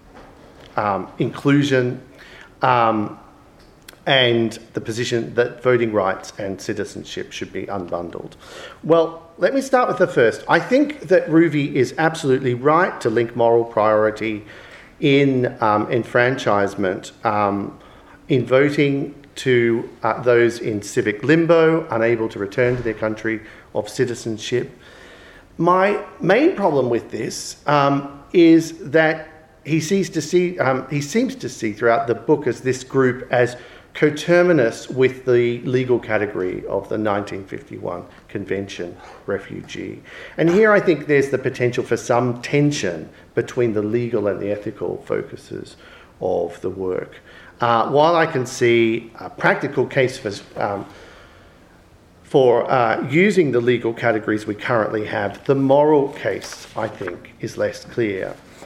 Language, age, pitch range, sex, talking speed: English, 40-59, 115-150 Hz, male, 130 wpm